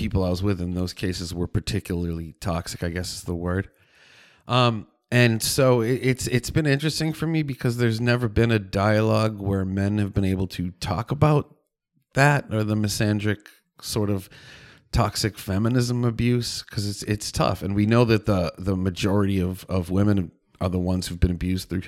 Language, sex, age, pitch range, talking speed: English, male, 30-49, 95-115 Hz, 185 wpm